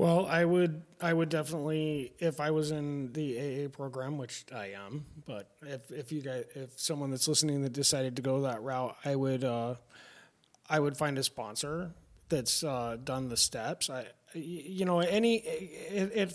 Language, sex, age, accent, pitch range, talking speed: English, male, 30-49, American, 125-155 Hz, 180 wpm